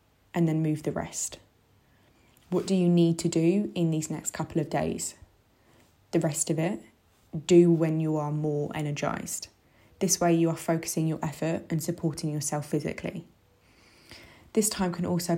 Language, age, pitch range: English, 20-39, 155-175 Hz